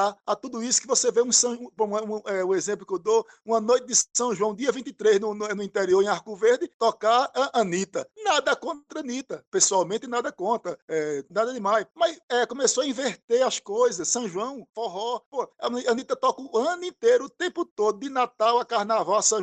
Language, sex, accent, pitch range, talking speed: Portuguese, male, Brazilian, 205-280 Hz, 215 wpm